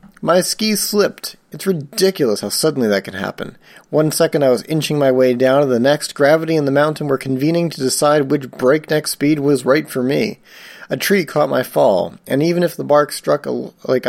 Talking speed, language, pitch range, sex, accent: 205 wpm, English, 120-160 Hz, male, American